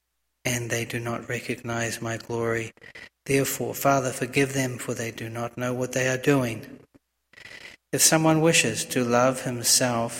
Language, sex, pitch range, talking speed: English, male, 120-130 Hz, 155 wpm